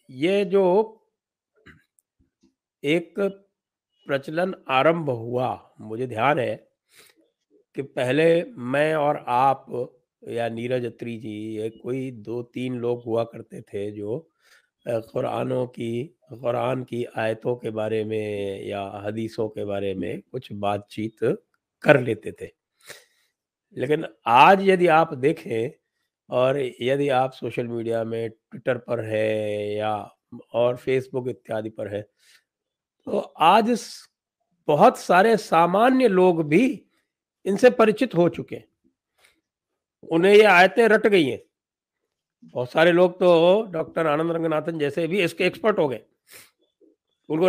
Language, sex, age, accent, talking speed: English, male, 50-69, Indian, 120 wpm